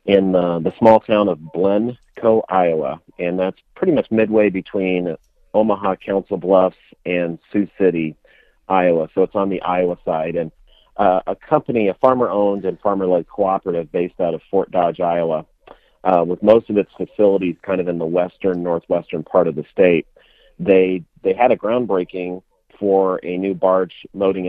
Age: 40-59